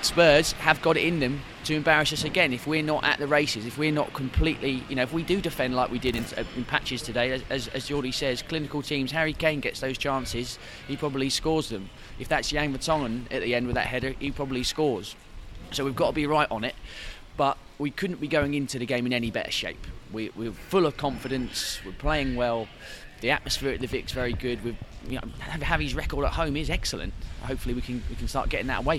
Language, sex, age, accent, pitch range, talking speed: English, male, 20-39, British, 110-150 Hz, 240 wpm